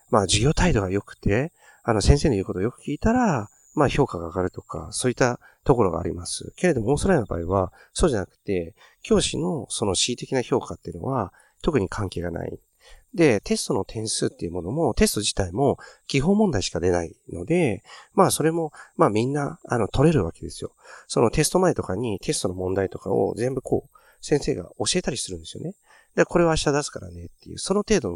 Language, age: Japanese, 40-59